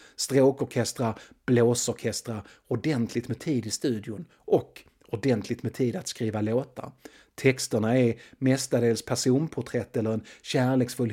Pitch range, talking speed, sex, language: 110-135 Hz, 115 wpm, male, Swedish